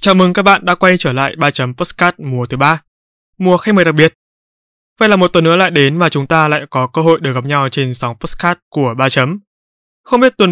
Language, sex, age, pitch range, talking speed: Vietnamese, male, 20-39, 135-185 Hz, 245 wpm